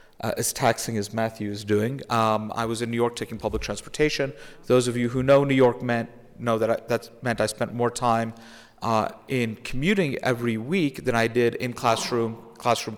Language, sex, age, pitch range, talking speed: English, male, 50-69, 115-130 Hz, 205 wpm